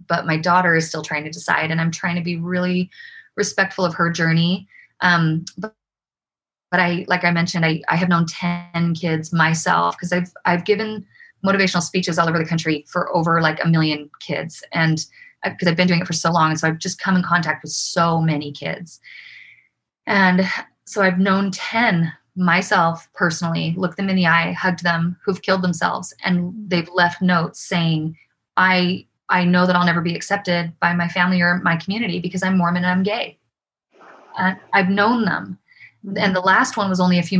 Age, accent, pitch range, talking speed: 20-39, American, 170-195 Hz, 195 wpm